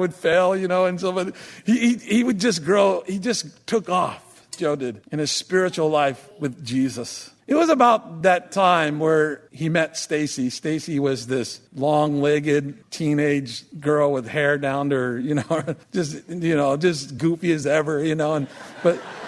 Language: English